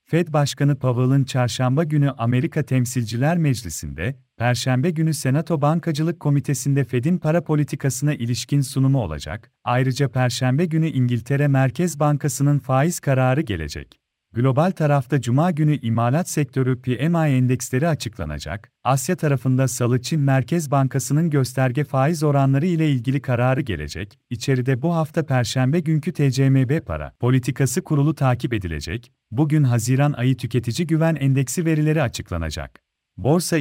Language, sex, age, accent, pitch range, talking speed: Turkish, male, 40-59, native, 125-155 Hz, 125 wpm